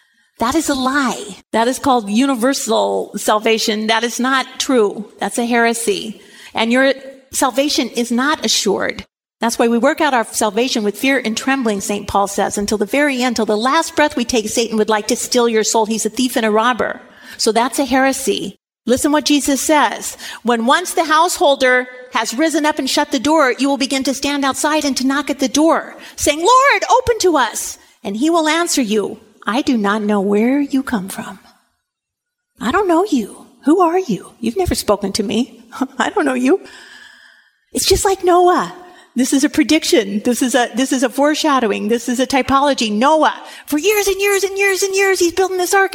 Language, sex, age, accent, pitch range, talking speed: English, female, 40-59, American, 235-340 Hz, 205 wpm